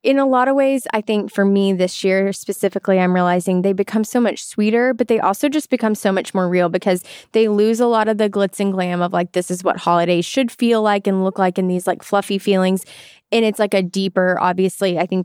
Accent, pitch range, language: American, 185-240 Hz, English